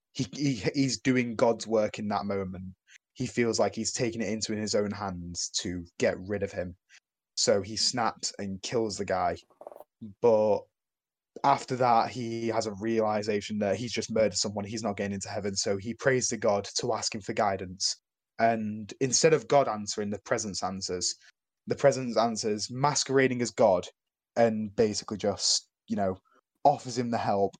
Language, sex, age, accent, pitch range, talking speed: English, male, 10-29, British, 100-115 Hz, 175 wpm